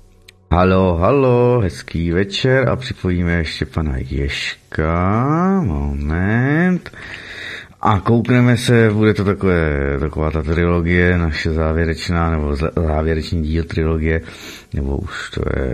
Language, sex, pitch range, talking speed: Czech, male, 75-95 Hz, 110 wpm